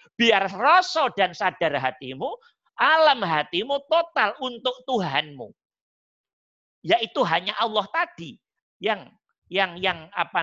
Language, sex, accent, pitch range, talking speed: Indonesian, male, native, 190-265 Hz, 105 wpm